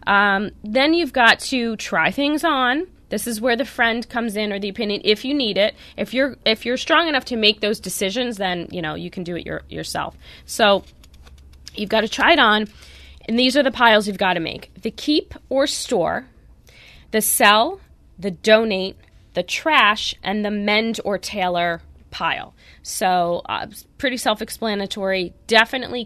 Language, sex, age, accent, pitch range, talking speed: English, female, 20-39, American, 185-235 Hz, 180 wpm